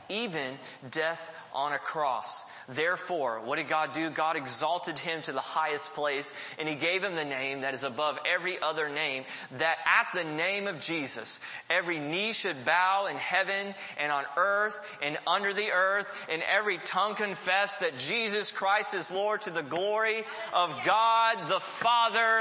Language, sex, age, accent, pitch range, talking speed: English, male, 30-49, American, 165-220 Hz, 170 wpm